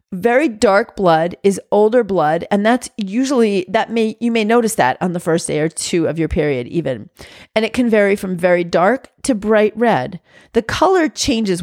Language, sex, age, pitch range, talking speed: English, female, 40-59, 175-220 Hz, 195 wpm